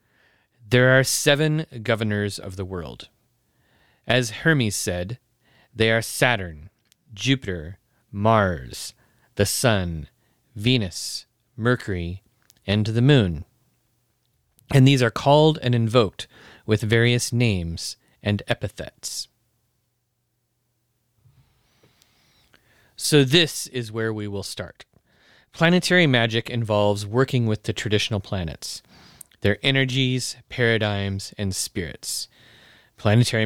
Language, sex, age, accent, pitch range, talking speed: English, male, 30-49, American, 100-130 Hz, 95 wpm